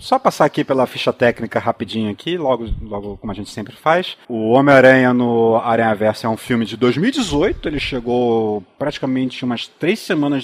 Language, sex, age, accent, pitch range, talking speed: Portuguese, male, 30-49, Brazilian, 110-150 Hz, 180 wpm